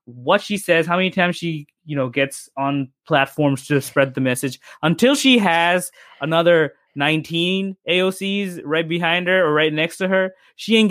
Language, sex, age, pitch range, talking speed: English, male, 20-39, 140-180 Hz, 175 wpm